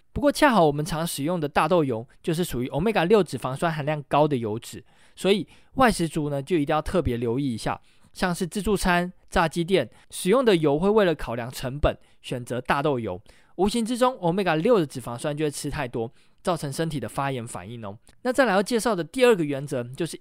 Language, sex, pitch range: Chinese, male, 130-190 Hz